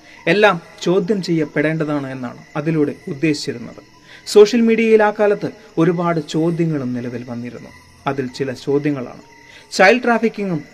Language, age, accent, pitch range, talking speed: Malayalam, 30-49, native, 145-200 Hz, 100 wpm